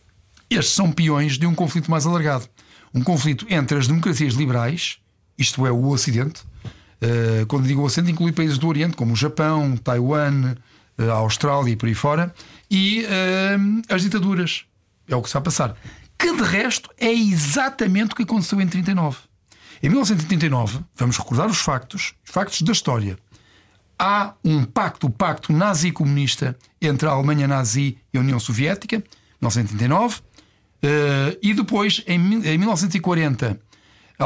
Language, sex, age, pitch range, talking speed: Portuguese, male, 60-79, 120-195 Hz, 145 wpm